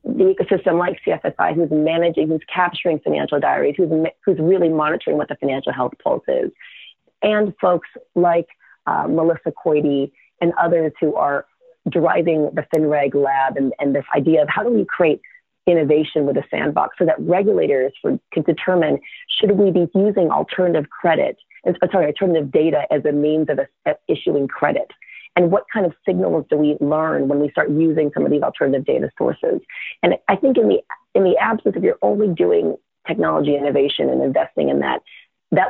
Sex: female